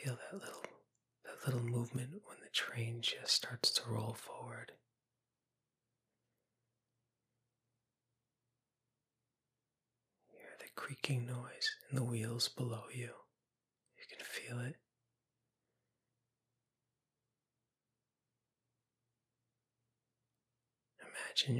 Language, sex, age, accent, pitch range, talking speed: English, male, 20-39, American, 120-125 Hz, 80 wpm